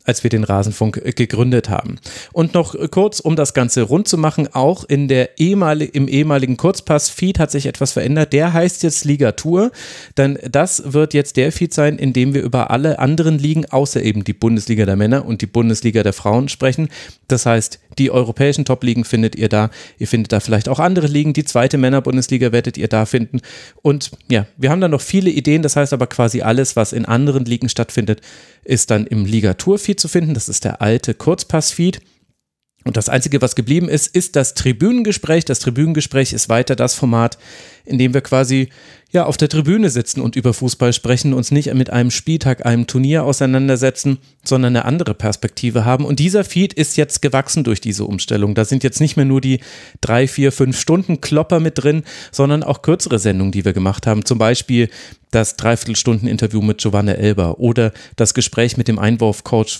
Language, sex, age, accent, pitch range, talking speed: German, male, 30-49, German, 115-145 Hz, 190 wpm